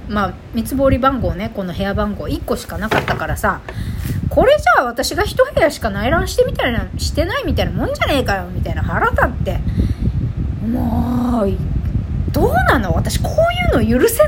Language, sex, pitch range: Japanese, female, 195-305 Hz